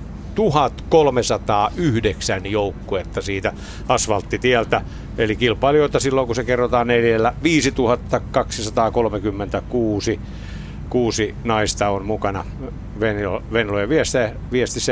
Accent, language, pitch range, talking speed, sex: native, Finnish, 95-120 Hz, 80 wpm, male